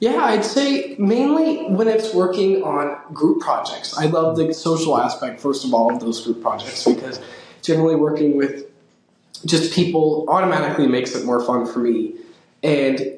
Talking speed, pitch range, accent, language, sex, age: 165 wpm, 150-180 Hz, American, English, male, 20-39